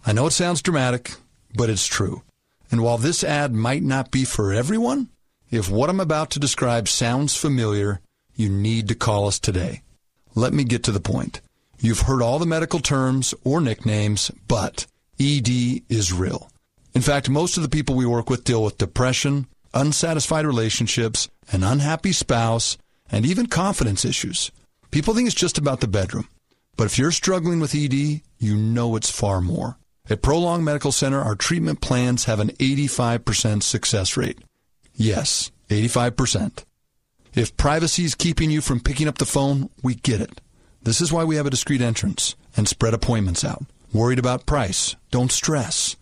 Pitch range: 110-145 Hz